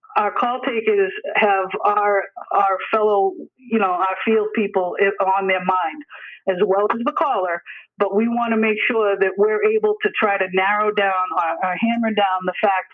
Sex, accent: female, American